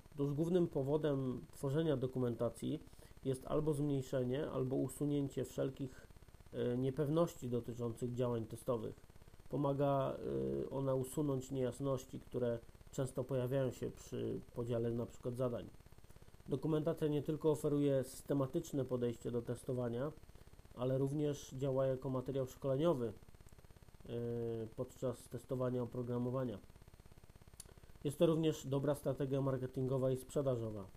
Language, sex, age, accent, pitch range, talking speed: Polish, male, 40-59, native, 115-140 Hz, 100 wpm